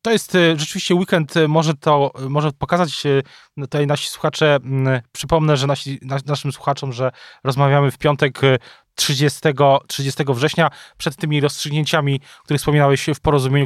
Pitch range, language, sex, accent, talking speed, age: 140-165 Hz, Polish, male, native, 140 wpm, 20-39